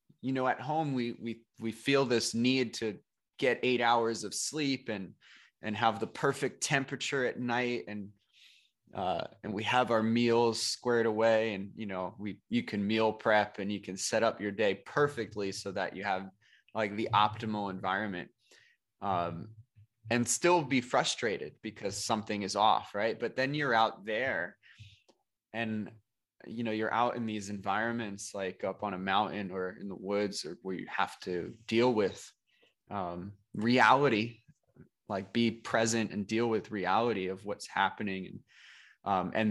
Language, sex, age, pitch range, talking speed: English, male, 20-39, 100-115 Hz, 165 wpm